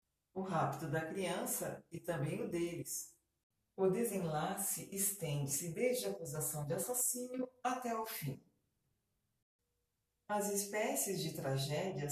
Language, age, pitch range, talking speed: Portuguese, 40-59, 140-195 Hz, 115 wpm